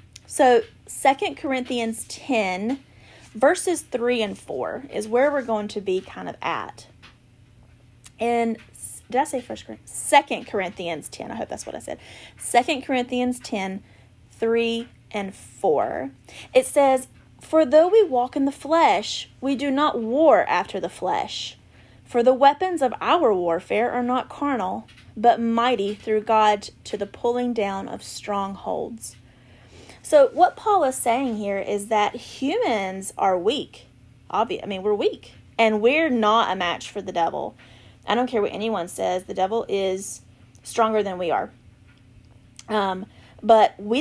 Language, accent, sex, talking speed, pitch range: English, American, female, 155 wpm, 185-250 Hz